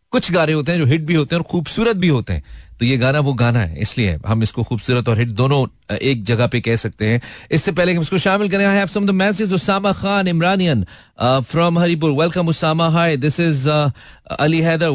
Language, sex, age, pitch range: Hindi, male, 40-59, 120-165 Hz